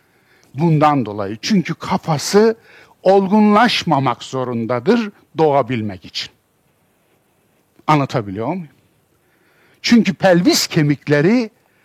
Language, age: Turkish, 60-79